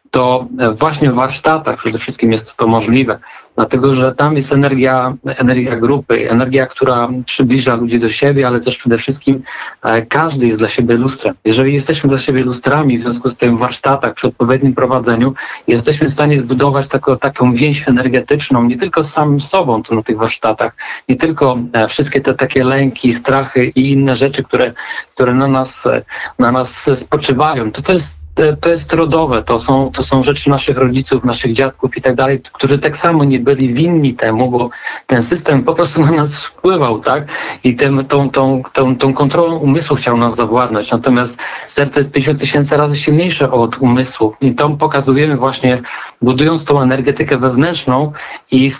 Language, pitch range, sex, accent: Polish, 120-145 Hz, male, native